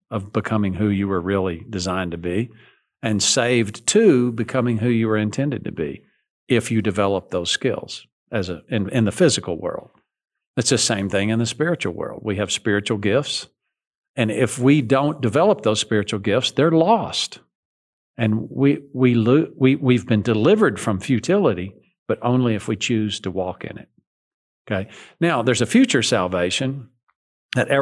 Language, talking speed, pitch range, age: English, 170 wpm, 100-125 Hz, 50-69